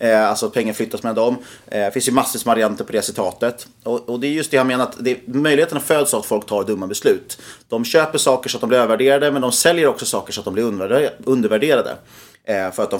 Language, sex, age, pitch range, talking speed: Swedish, male, 30-49, 110-130 Hz, 250 wpm